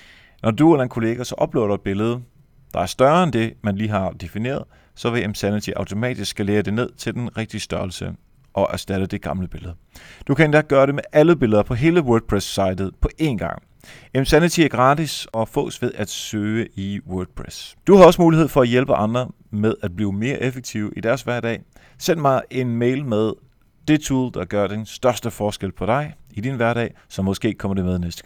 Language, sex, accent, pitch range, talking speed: Danish, male, native, 105-140 Hz, 205 wpm